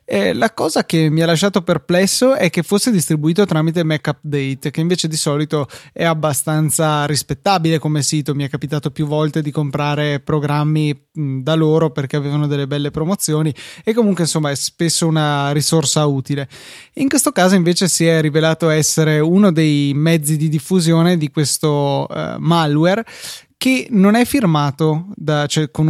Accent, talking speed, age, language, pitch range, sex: native, 160 wpm, 20-39, Italian, 150-175 Hz, male